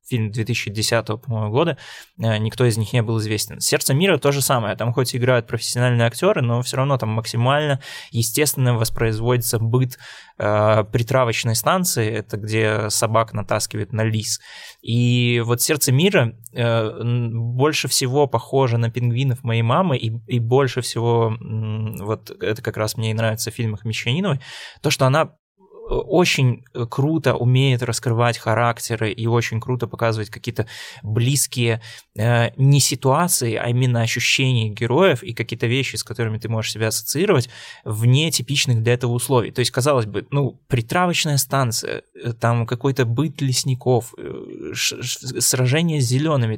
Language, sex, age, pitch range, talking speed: Russian, male, 20-39, 115-135 Hz, 140 wpm